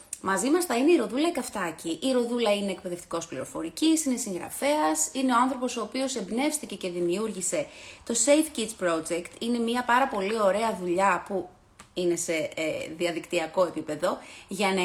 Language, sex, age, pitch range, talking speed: Greek, female, 30-49, 175-265 Hz, 160 wpm